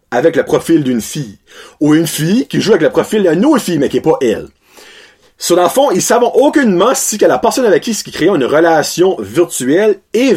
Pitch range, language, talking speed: 150-255 Hz, French, 230 wpm